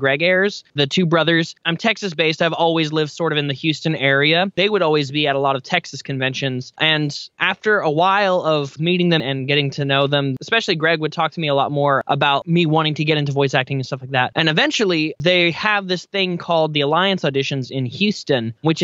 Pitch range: 145-180 Hz